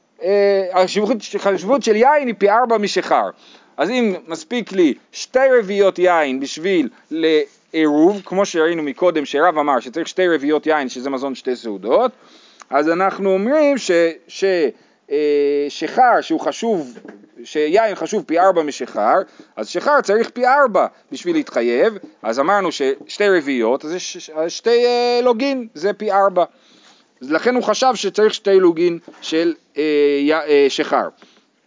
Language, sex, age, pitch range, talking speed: Hebrew, male, 40-59, 165-250 Hz, 130 wpm